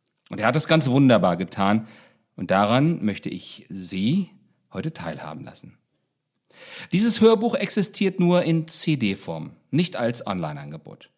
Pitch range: 120-175 Hz